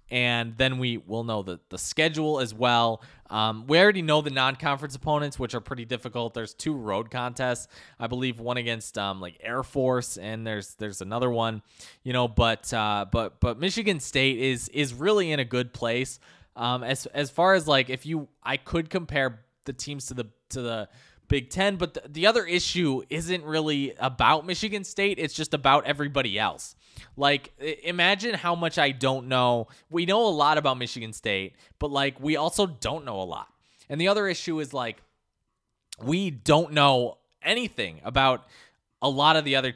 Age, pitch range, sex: 20-39, 115-150 Hz, male